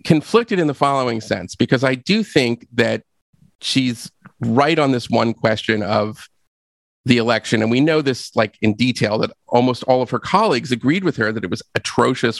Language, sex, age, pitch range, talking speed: English, male, 40-59, 115-150 Hz, 190 wpm